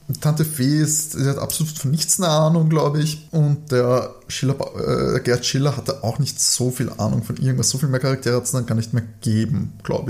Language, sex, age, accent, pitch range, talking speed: German, male, 20-39, German, 125-165 Hz, 230 wpm